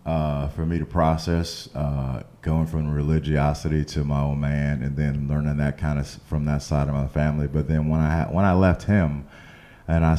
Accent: American